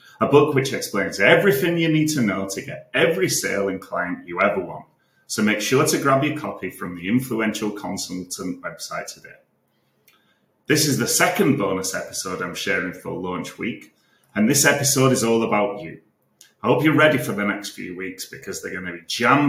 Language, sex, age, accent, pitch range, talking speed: English, male, 30-49, British, 100-140 Hz, 195 wpm